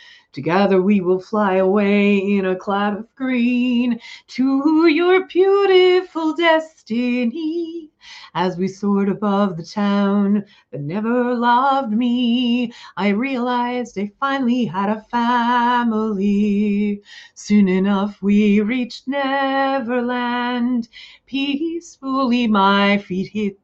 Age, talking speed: 30-49, 100 wpm